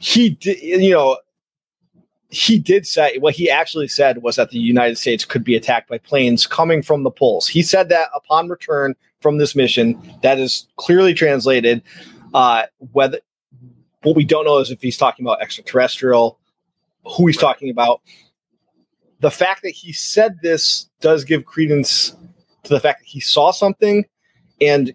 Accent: American